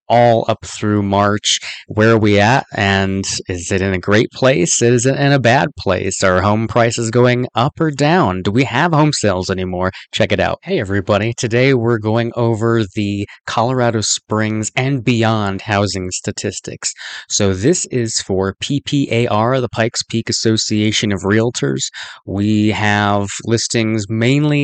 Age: 20-39